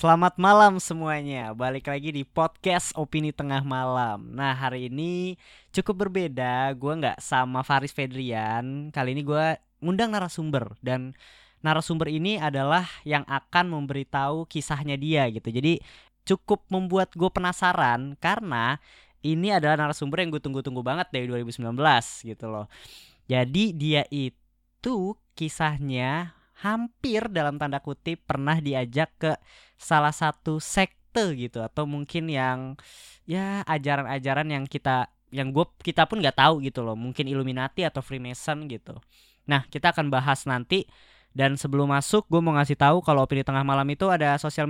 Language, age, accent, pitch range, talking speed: Indonesian, 20-39, native, 135-170 Hz, 140 wpm